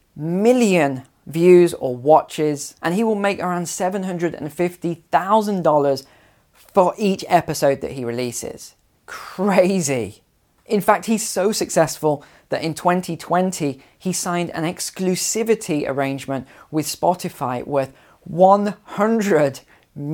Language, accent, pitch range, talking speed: English, British, 145-185 Hz, 100 wpm